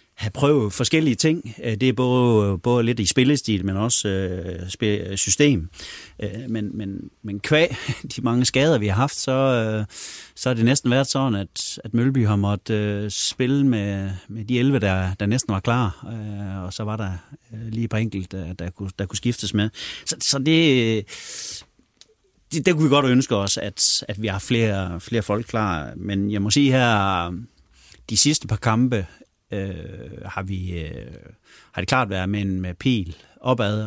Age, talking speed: 30-49, 190 wpm